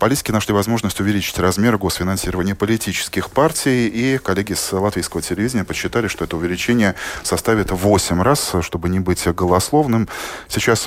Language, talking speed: Russian, 140 wpm